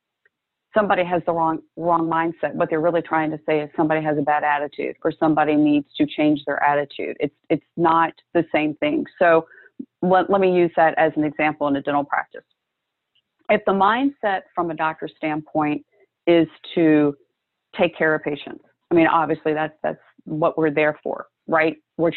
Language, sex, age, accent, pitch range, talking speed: English, female, 40-59, American, 155-175 Hz, 185 wpm